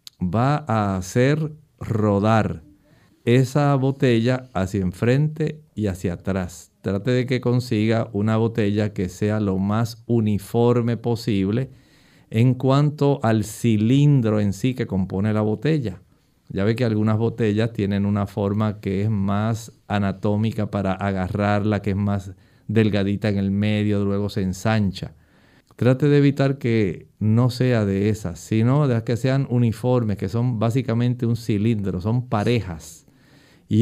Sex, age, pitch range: male, 50-69, 100-125 Hz